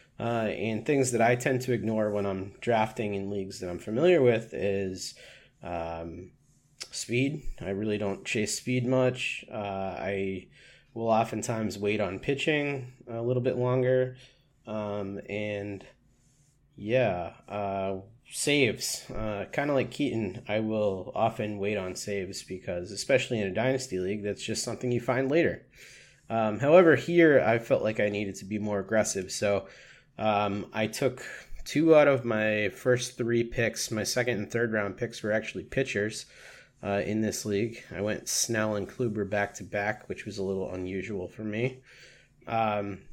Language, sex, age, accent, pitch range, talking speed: English, male, 20-39, American, 100-130 Hz, 160 wpm